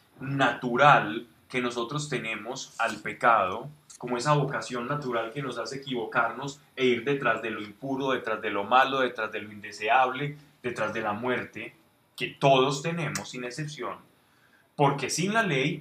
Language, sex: Spanish, male